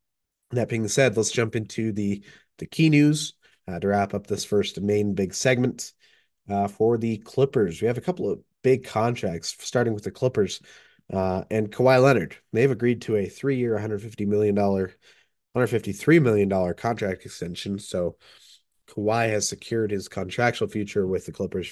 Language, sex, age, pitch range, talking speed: English, male, 30-49, 100-120 Hz, 165 wpm